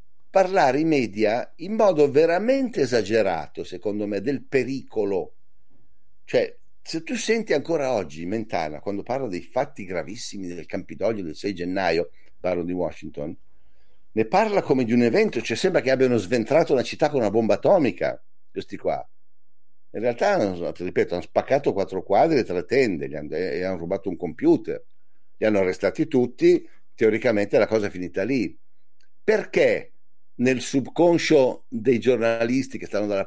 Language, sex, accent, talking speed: Italian, male, native, 155 wpm